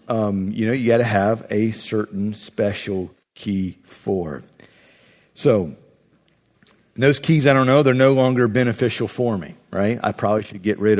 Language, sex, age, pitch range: English, male, 50-69, 110-165 Hz